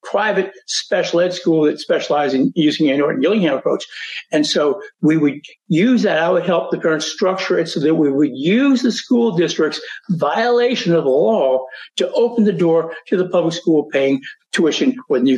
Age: 60-79